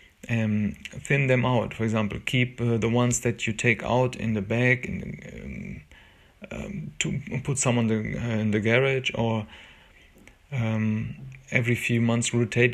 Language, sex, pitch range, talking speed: English, male, 115-130 Hz, 165 wpm